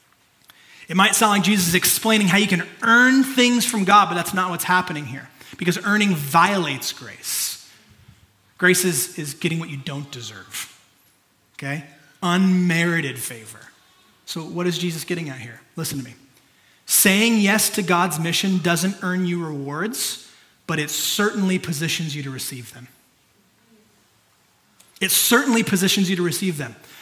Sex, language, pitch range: male, English, 160-210 Hz